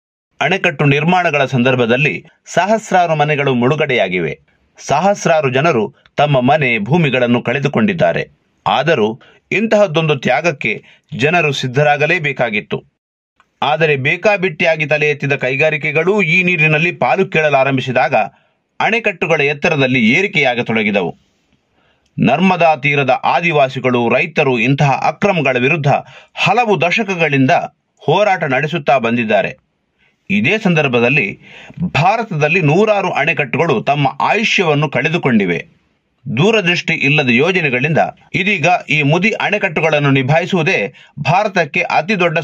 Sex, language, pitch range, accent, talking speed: male, Kannada, 140-195 Hz, native, 85 wpm